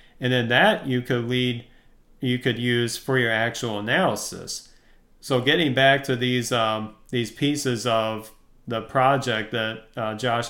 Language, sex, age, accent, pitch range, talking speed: English, male, 40-59, American, 115-135 Hz, 155 wpm